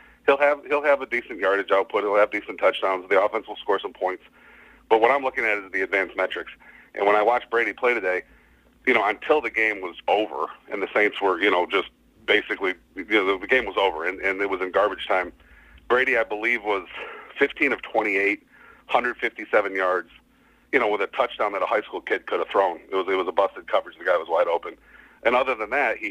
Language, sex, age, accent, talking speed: English, male, 40-59, American, 230 wpm